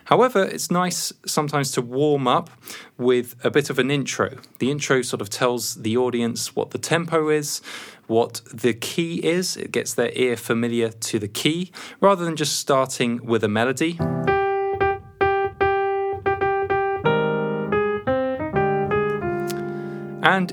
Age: 20-39